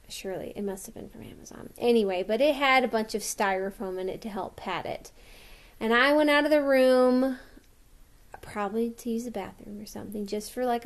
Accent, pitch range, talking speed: American, 210-275 Hz, 210 wpm